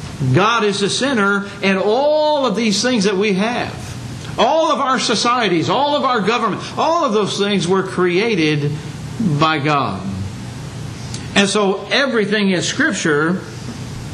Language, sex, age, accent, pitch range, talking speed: English, male, 60-79, American, 135-210 Hz, 140 wpm